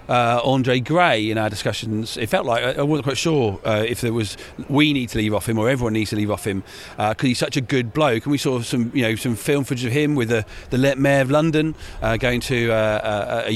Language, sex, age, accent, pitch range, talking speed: English, male, 40-59, British, 115-145 Hz, 270 wpm